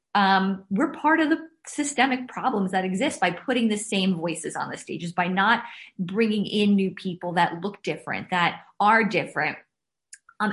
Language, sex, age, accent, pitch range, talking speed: English, female, 20-39, American, 180-215 Hz, 170 wpm